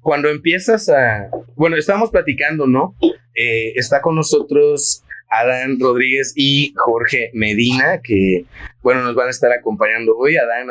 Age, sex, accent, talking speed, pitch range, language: 30-49, male, Mexican, 140 wpm, 110-150 Hz, Spanish